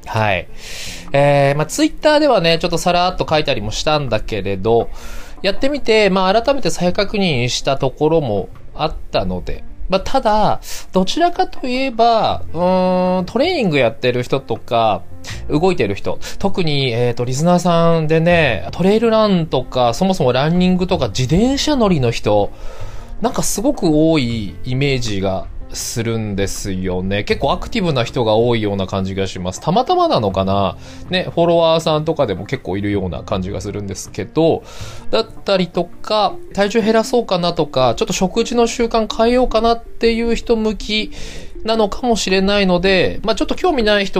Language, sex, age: Japanese, male, 20-39